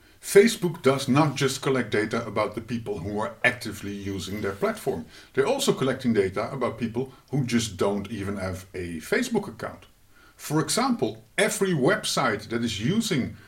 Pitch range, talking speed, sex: 105-155 Hz, 160 wpm, male